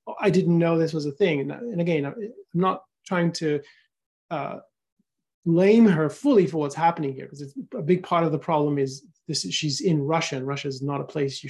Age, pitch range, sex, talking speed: 30-49, 150-195 Hz, male, 220 wpm